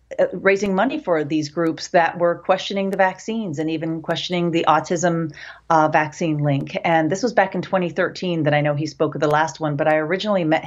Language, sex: English, female